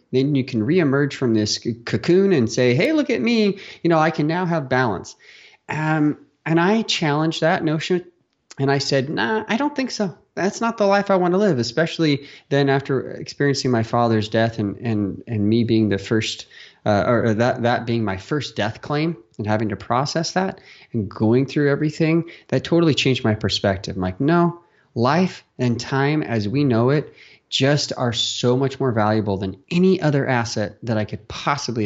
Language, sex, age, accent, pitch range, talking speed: English, male, 30-49, American, 110-155 Hz, 195 wpm